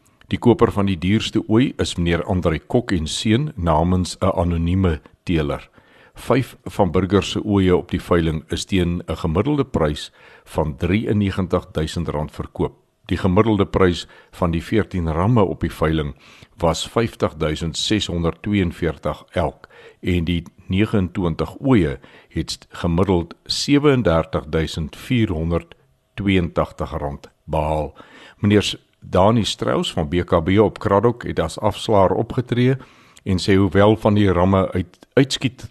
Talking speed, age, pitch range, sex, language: 125 wpm, 60-79, 80-105 Hz, male, German